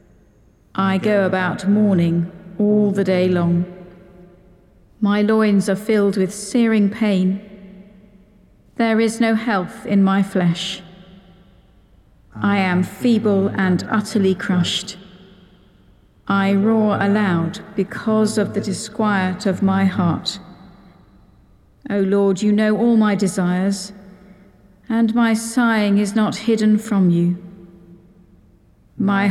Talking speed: 110 wpm